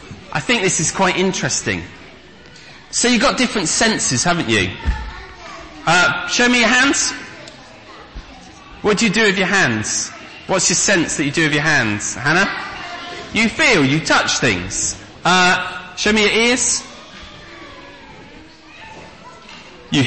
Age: 30-49